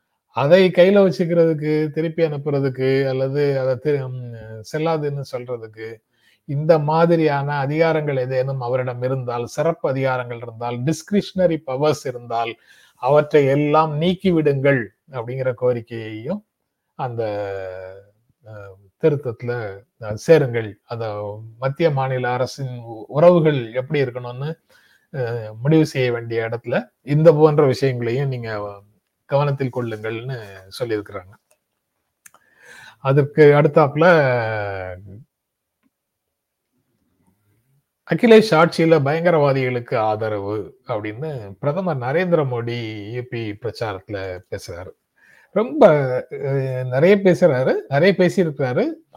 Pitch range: 115-160 Hz